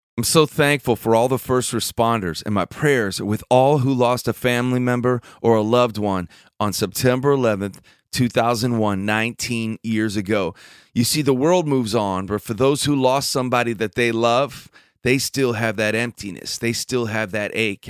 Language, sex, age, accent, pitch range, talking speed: English, male, 30-49, American, 105-130 Hz, 180 wpm